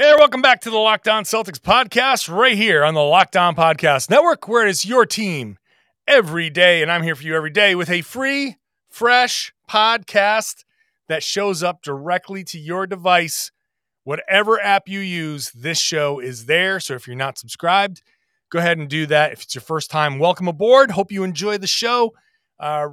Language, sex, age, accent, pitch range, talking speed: English, male, 30-49, American, 140-200 Hz, 185 wpm